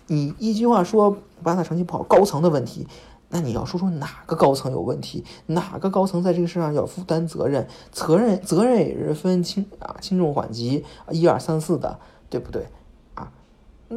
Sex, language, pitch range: male, Chinese, 170-235 Hz